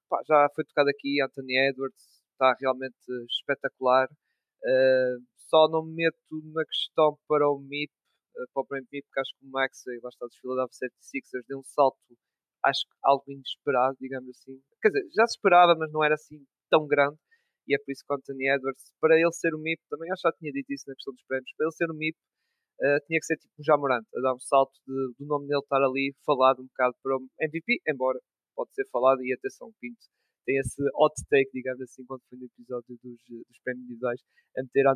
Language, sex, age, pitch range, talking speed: Portuguese, male, 20-39, 130-155 Hz, 225 wpm